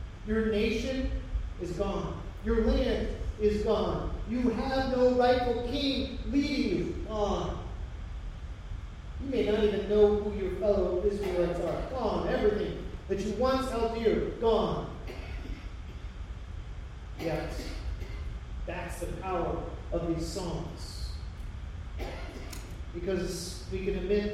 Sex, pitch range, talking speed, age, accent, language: male, 180-255 Hz, 110 wpm, 40-59, American, English